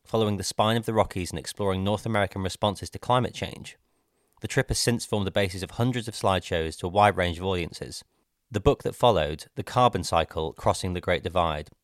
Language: English